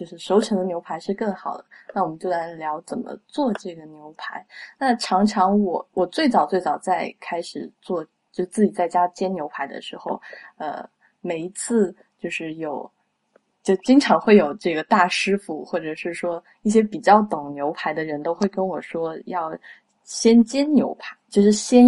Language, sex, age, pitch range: Chinese, female, 20-39, 180-240 Hz